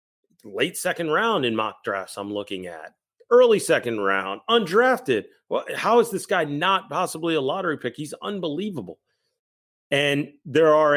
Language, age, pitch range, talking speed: English, 30-49, 110-145 Hz, 155 wpm